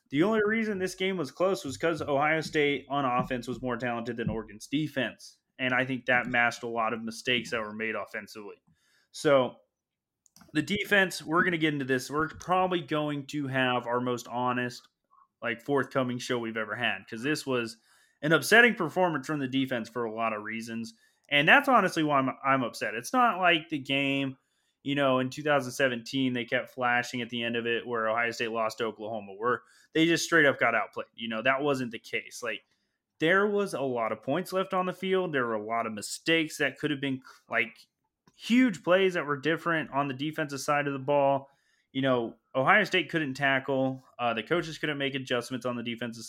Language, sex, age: English, male, 20-39